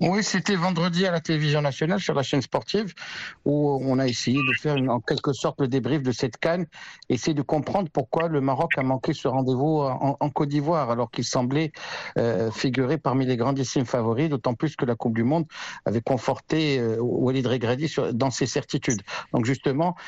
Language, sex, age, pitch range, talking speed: French, male, 60-79, 130-155 Hz, 195 wpm